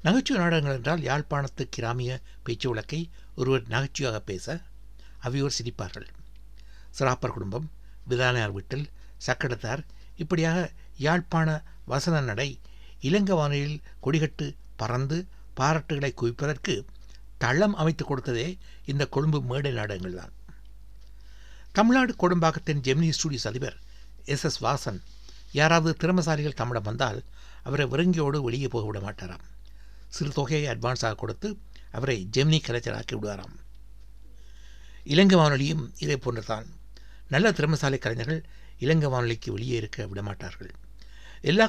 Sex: male